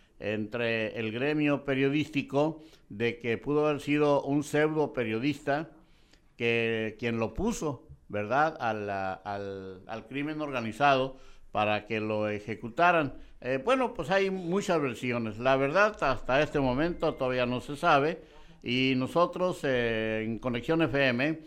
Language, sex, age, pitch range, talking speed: Spanish, male, 60-79, 110-145 Hz, 130 wpm